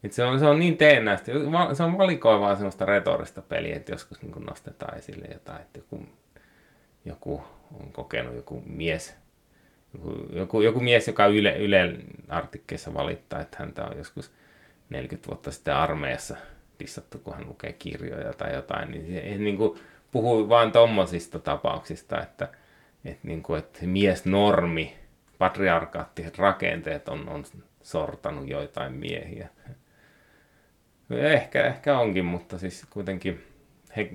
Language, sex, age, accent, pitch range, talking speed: Finnish, male, 30-49, native, 85-115 Hz, 135 wpm